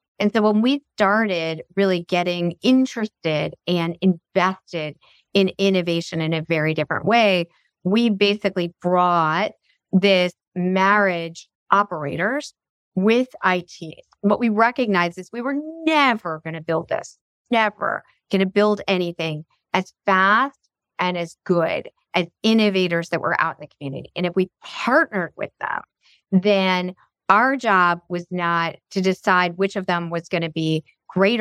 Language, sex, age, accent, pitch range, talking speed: English, female, 40-59, American, 170-205 Hz, 145 wpm